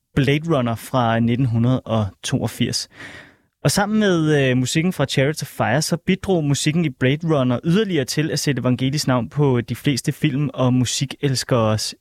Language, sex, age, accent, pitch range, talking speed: Danish, male, 30-49, native, 125-150 Hz, 155 wpm